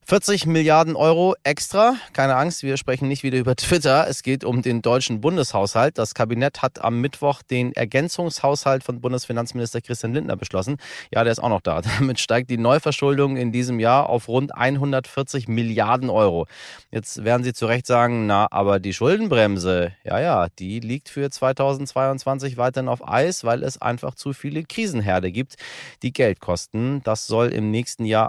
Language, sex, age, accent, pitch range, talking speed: German, male, 30-49, German, 115-140 Hz, 175 wpm